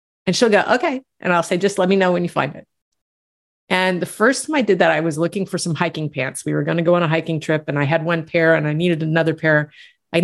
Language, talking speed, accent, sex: English, 285 wpm, American, female